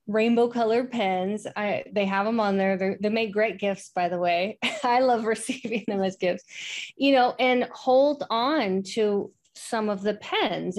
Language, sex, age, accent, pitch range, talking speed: English, female, 30-49, American, 190-235 Hz, 185 wpm